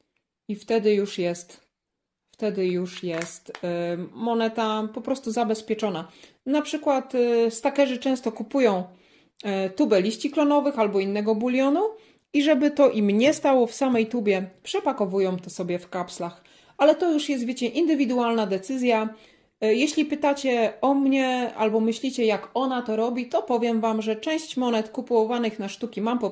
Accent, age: native, 30-49